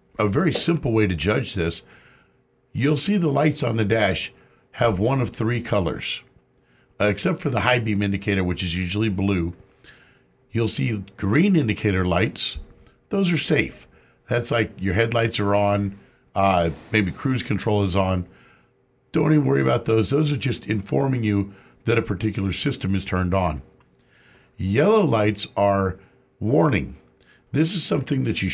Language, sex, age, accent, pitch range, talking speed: English, male, 50-69, American, 95-130 Hz, 160 wpm